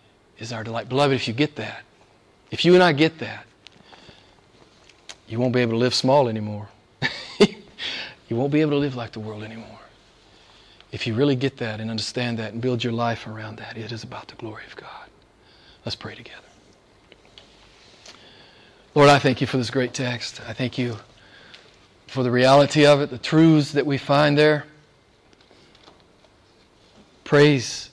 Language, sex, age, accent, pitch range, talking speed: English, male, 40-59, American, 115-150 Hz, 170 wpm